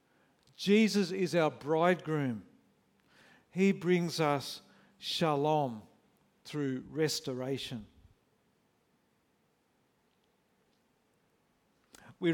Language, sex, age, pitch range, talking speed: English, male, 50-69, 145-185 Hz, 55 wpm